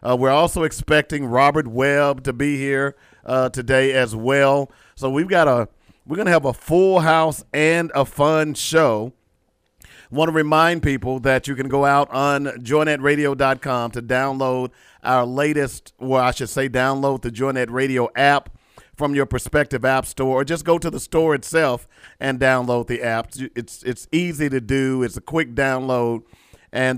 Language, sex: English, male